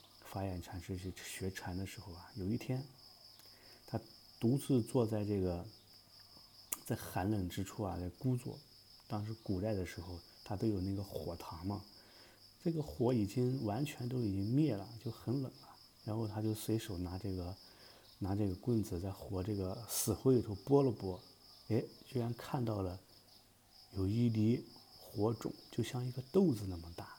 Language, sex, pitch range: English, male, 95-115 Hz